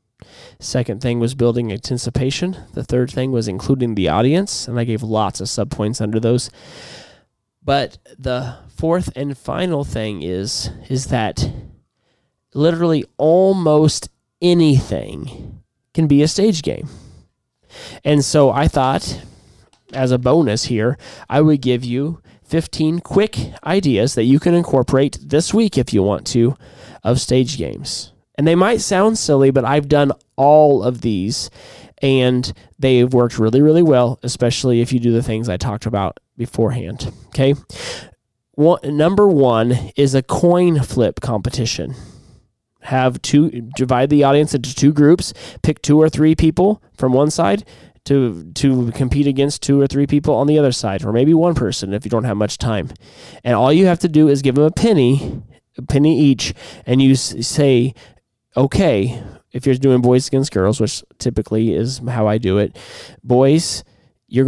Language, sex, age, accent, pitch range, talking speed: English, male, 20-39, American, 115-150 Hz, 160 wpm